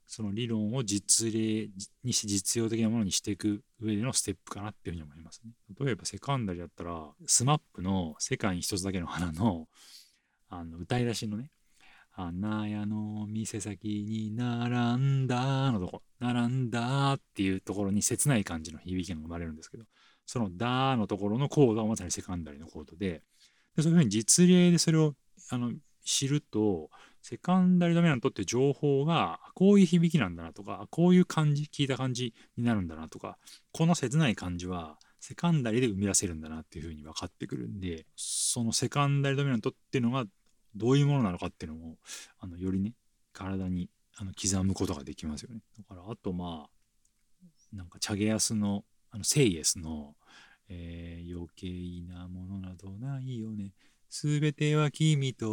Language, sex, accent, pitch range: Japanese, male, native, 90-130 Hz